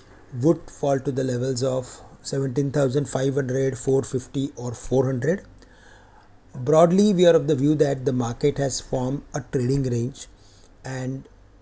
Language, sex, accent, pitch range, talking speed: English, male, Indian, 125-150 Hz, 130 wpm